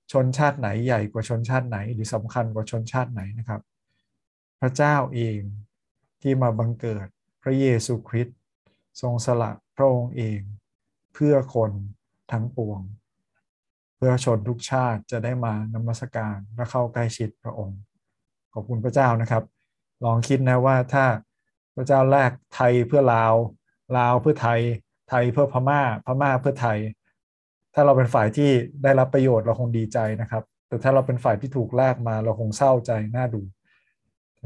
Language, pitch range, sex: Thai, 110-130 Hz, male